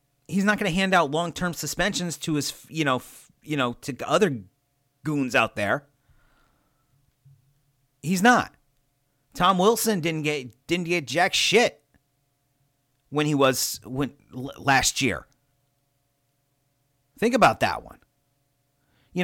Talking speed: 130 wpm